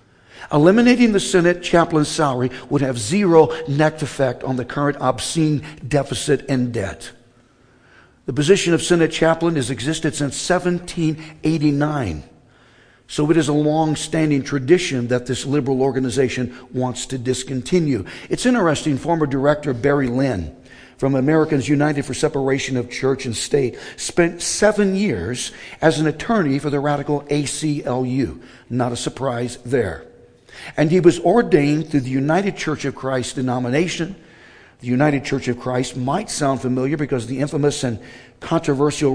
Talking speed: 140 wpm